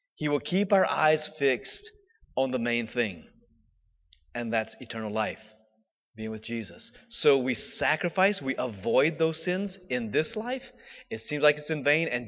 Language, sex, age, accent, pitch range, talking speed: English, male, 30-49, American, 115-165 Hz, 165 wpm